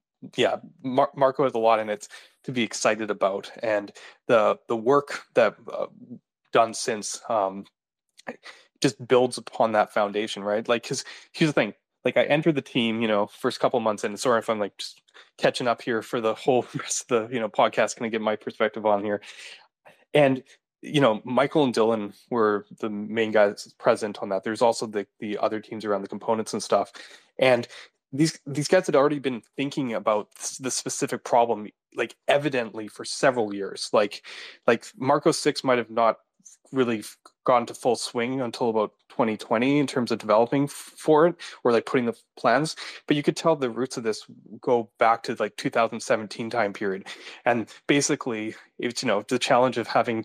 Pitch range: 105-135 Hz